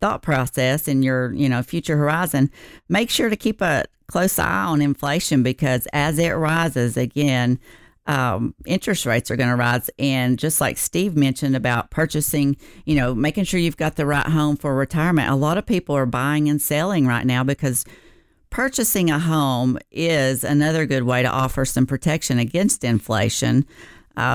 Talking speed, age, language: 175 wpm, 50-69, English